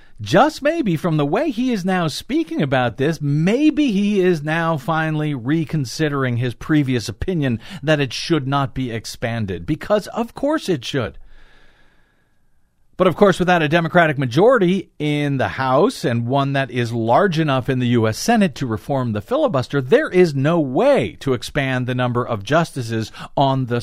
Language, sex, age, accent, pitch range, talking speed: English, male, 50-69, American, 125-180 Hz, 170 wpm